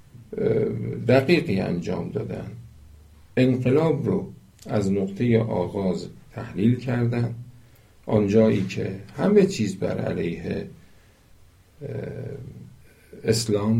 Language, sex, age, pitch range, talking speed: Persian, male, 50-69, 105-130 Hz, 75 wpm